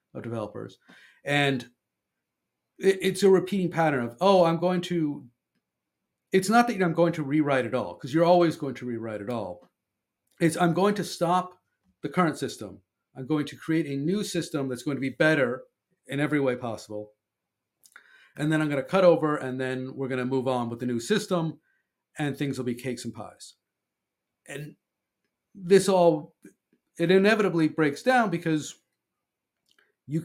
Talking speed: 175 wpm